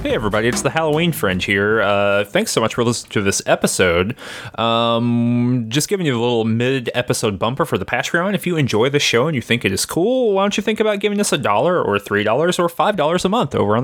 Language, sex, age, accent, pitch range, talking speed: English, male, 30-49, American, 105-170 Hz, 250 wpm